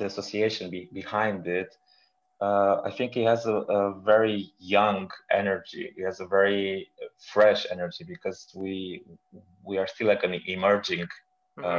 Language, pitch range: English, 90-110 Hz